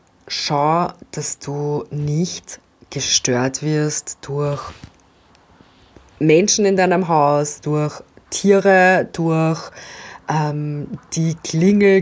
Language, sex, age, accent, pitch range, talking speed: German, female, 20-39, German, 140-180 Hz, 85 wpm